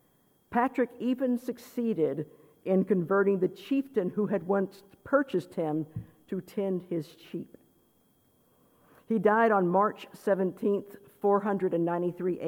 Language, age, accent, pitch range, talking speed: English, 50-69, American, 175-215 Hz, 105 wpm